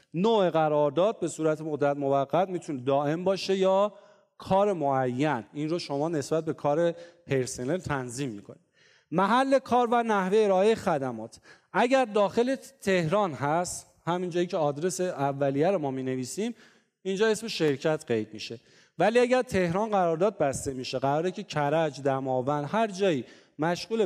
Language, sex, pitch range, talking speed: Persian, male, 140-200 Hz, 140 wpm